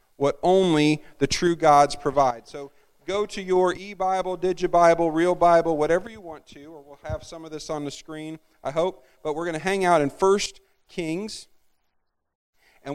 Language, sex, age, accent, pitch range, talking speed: English, male, 40-59, American, 145-180 Hz, 180 wpm